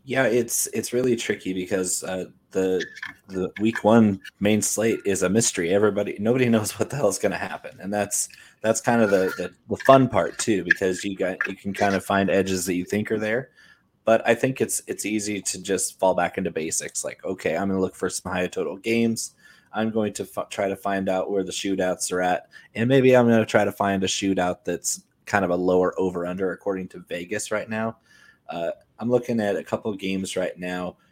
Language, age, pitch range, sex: English, 20-39, 95-110 Hz, male